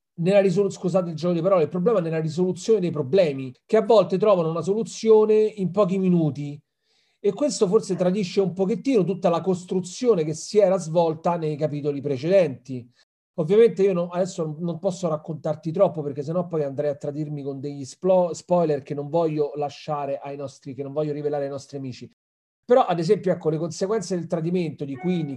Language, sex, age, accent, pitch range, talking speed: Italian, male, 40-59, native, 145-190 Hz, 190 wpm